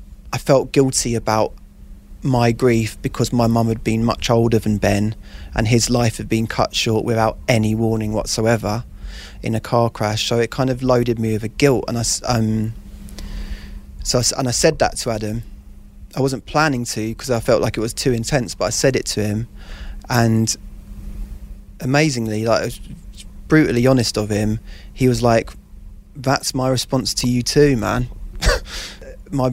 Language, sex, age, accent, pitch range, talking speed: English, male, 20-39, British, 105-130 Hz, 180 wpm